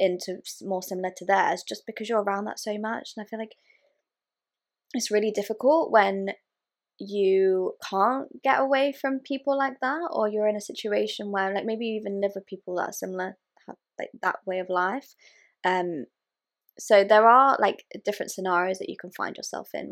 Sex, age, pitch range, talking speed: female, 20-39, 185-230 Hz, 185 wpm